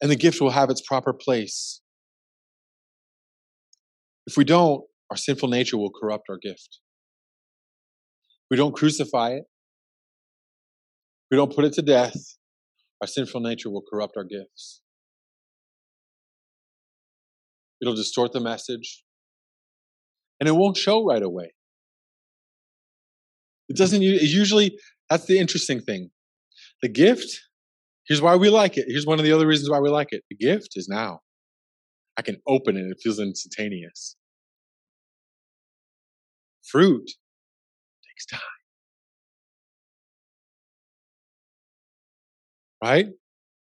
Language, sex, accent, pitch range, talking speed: English, male, American, 110-160 Hz, 115 wpm